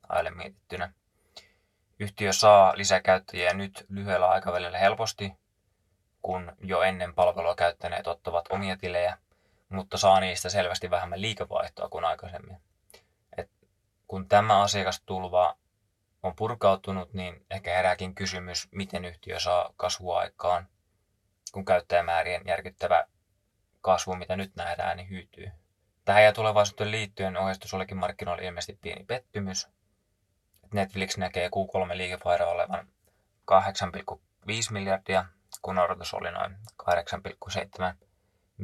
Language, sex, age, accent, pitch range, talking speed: Finnish, male, 20-39, native, 90-100 Hz, 105 wpm